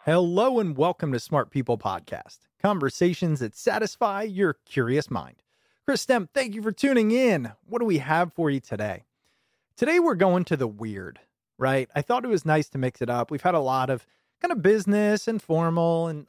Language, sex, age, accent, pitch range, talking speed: English, male, 30-49, American, 130-195 Hz, 200 wpm